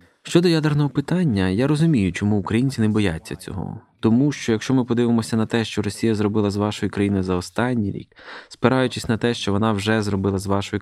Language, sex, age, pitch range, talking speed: Ukrainian, male, 20-39, 100-120 Hz, 195 wpm